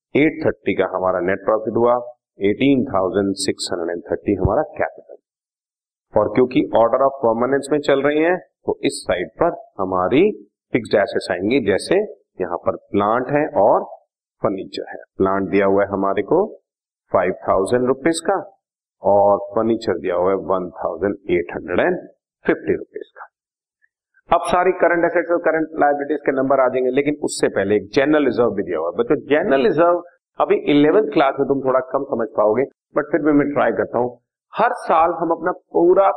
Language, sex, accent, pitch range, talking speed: Hindi, male, native, 125-170 Hz, 160 wpm